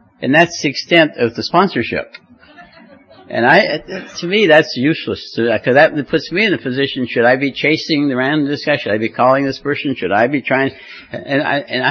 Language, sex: English, male